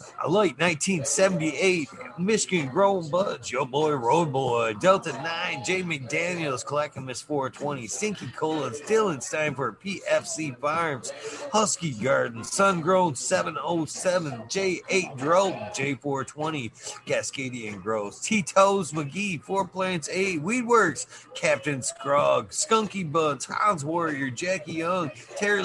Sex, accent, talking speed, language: male, American, 110 wpm, English